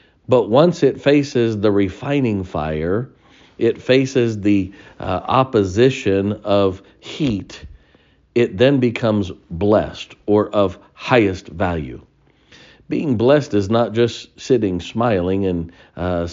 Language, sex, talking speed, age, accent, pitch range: English, male, 115 wpm, 50-69, American, 95-115 Hz